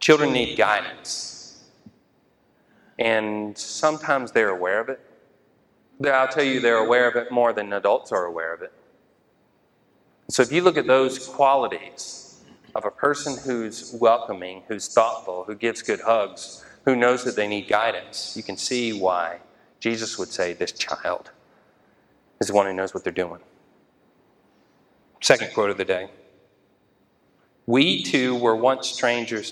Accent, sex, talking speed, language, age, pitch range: American, male, 150 wpm, English, 40-59, 100-125 Hz